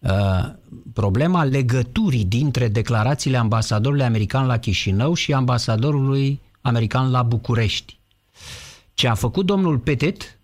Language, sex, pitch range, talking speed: Romanian, male, 120-165 Hz, 105 wpm